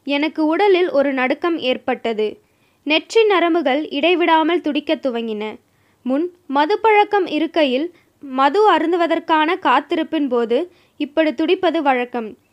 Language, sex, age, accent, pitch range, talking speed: Tamil, female, 20-39, native, 280-355 Hz, 90 wpm